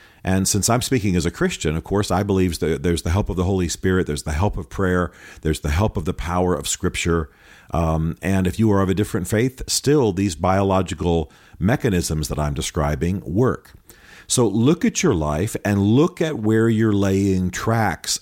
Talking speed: 200 wpm